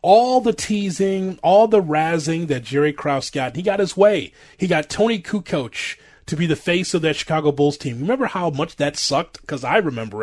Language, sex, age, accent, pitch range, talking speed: English, male, 30-49, American, 135-180 Hz, 205 wpm